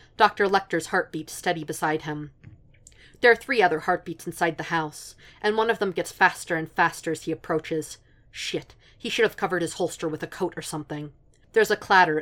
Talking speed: 195 wpm